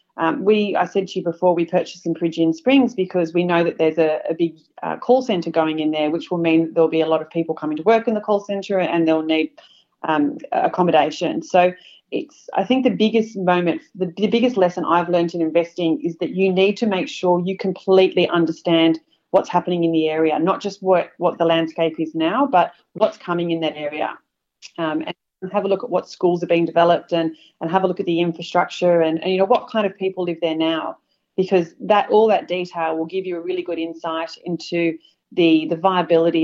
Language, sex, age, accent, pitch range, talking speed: English, female, 30-49, Australian, 165-190 Hz, 225 wpm